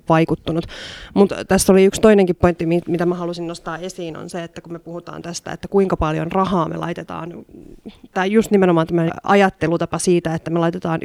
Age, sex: 30-49, female